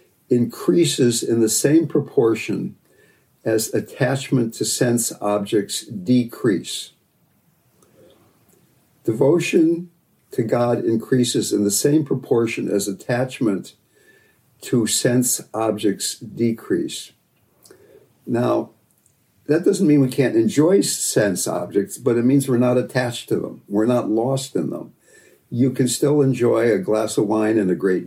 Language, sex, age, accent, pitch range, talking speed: English, male, 60-79, American, 110-135 Hz, 125 wpm